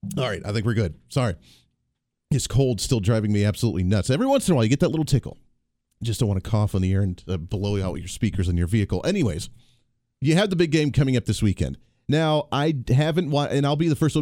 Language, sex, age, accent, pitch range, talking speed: English, male, 40-59, American, 105-155 Hz, 260 wpm